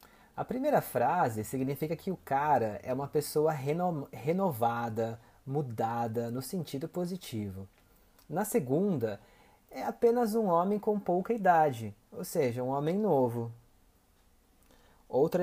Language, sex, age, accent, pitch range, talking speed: Portuguese, male, 30-49, Brazilian, 115-175 Hz, 115 wpm